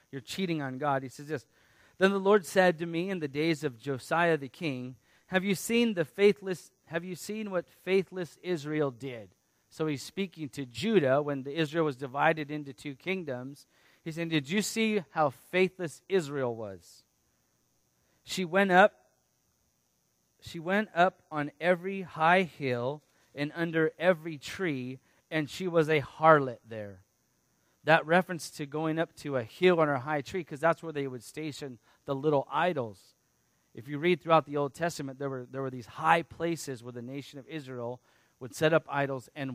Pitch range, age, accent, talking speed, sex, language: 135-170 Hz, 30-49, American, 180 wpm, male, English